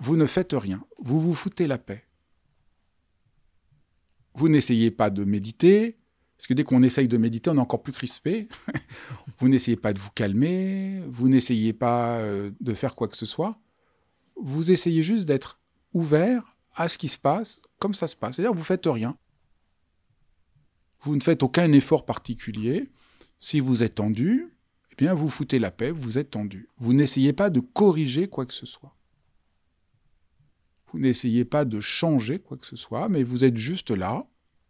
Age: 50-69